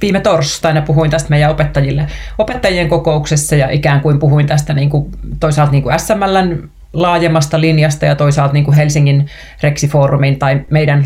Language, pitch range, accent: Finnish, 145-160 Hz, native